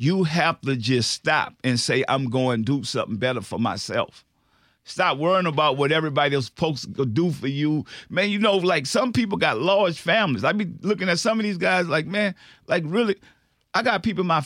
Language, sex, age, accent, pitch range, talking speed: English, male, 50-69, American, 150-210 Hz, 220 wpm